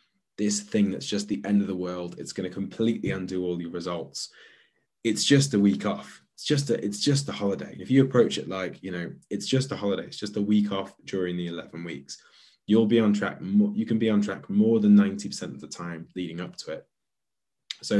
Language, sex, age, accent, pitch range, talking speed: English, male, 20-39, British, 90-115 Hz, 220 wpm